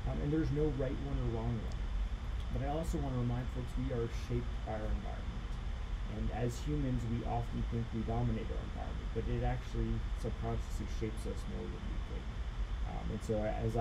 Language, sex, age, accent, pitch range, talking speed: English, male, 30-49, American, 95-115 Hz, 200 wpm